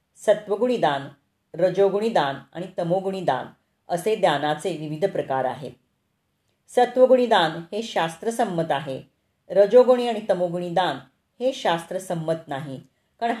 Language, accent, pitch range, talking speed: Marathi, native, 165-200 Hz, 110 wpm